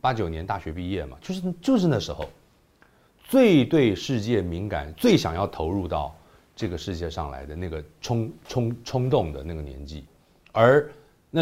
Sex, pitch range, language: male, 80-105 Hz, Chinese